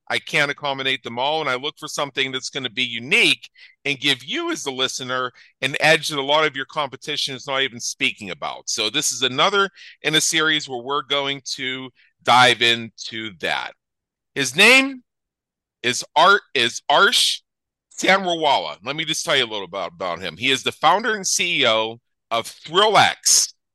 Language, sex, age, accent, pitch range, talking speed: English, male, 40-59, American, 125-155 Hz, 185 wpm